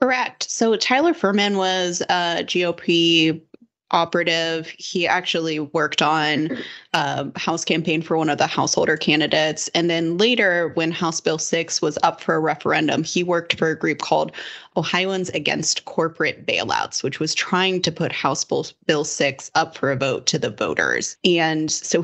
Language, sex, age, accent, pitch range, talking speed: English, female, 20-39, American, 150-175 Hz, 165 wpm